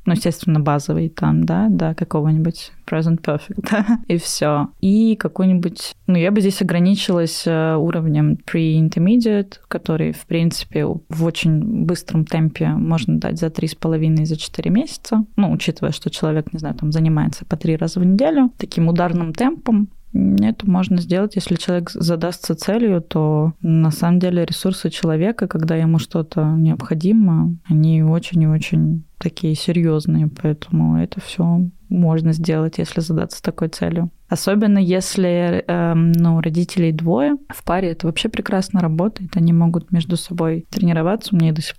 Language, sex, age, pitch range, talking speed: Russian, female, 20-39, 160-195 Hz, 150 wpm